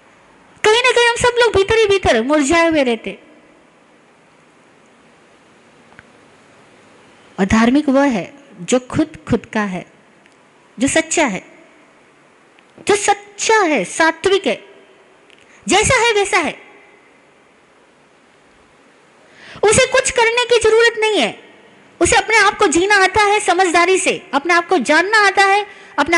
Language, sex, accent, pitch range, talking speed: Hindi, female, native, 300-405 Hz, 130 wpm